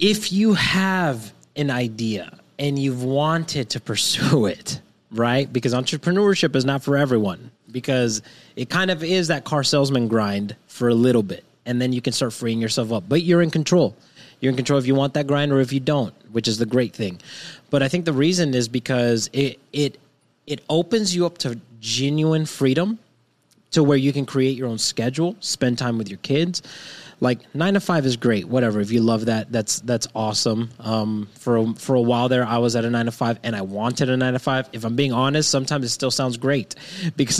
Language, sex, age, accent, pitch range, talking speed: English, male, 20-39, American, 120-150 Hz, 215 wpm